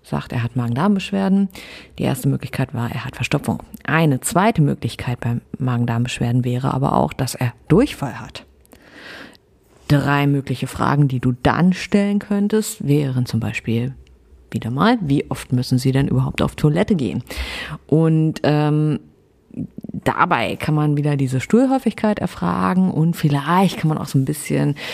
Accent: German